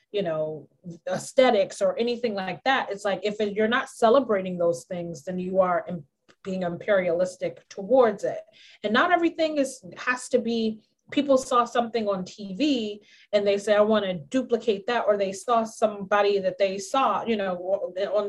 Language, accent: English, American